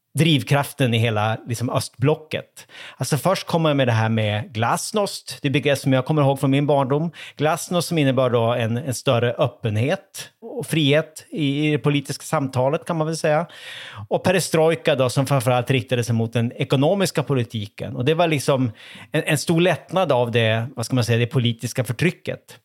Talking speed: 185 wpm